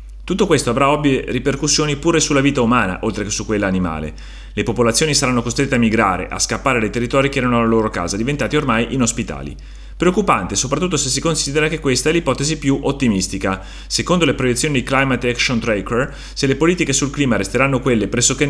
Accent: native